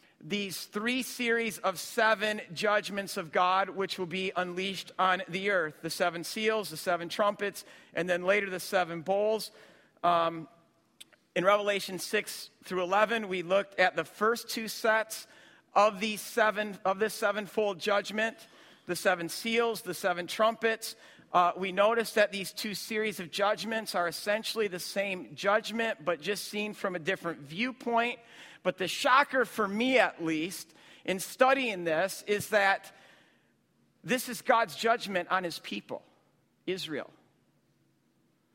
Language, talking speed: English, 145 wpm